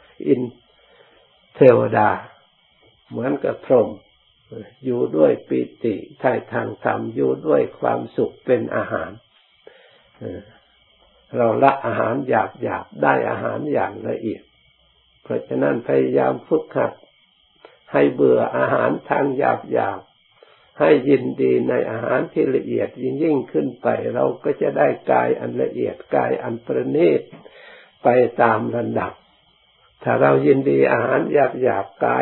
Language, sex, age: Thai, male, 60-79